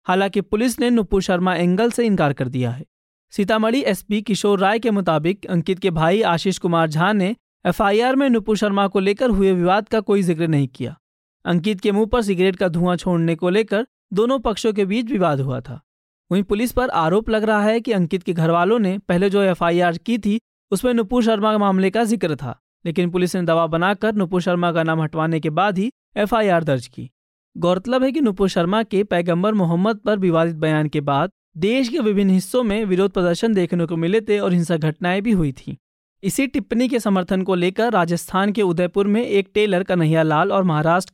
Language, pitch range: Hindi, 165-215 Hz